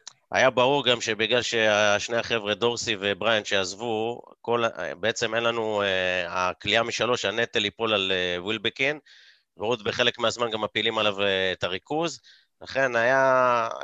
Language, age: Hebrew, 30-49